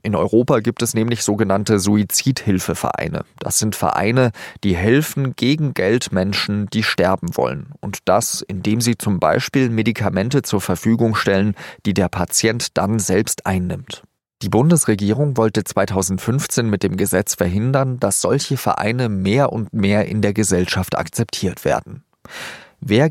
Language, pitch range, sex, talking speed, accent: German, 100-130 Hz, male, 140 wpm, German